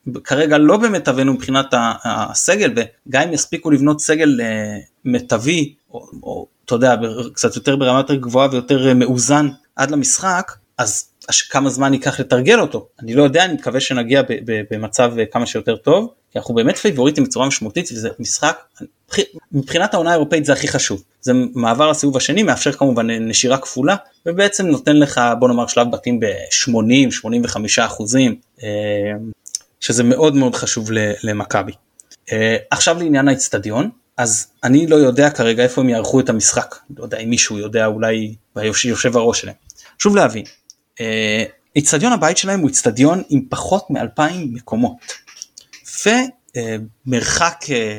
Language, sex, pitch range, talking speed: Hebrew, male, 115-150 Hz, 145 wpm